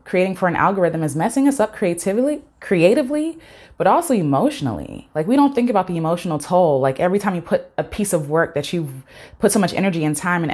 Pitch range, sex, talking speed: 150-185 Hz, female, 230 wpm